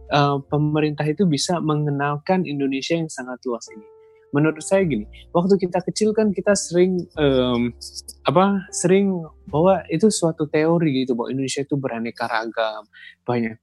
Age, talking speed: 20-39, 145 wpm